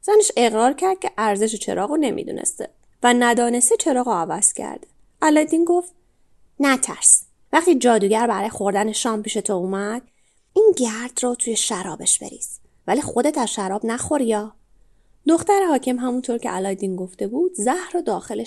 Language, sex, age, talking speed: Persian, female, 30-49, 145 wpm